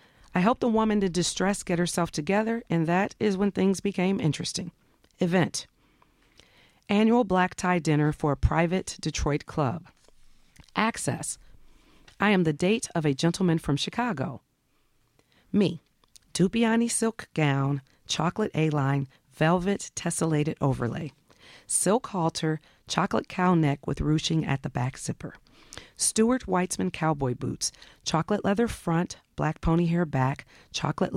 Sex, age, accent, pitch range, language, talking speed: female, 40-59, American, 150-200 Hz, English, 130 wpm